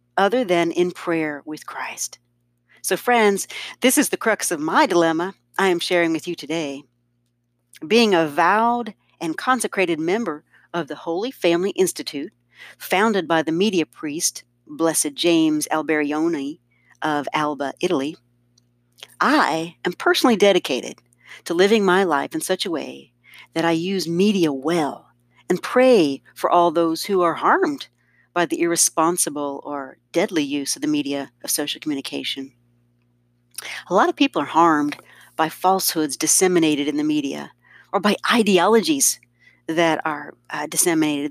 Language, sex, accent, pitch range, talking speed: English, female, American, 140-185 Hz, 145 wpm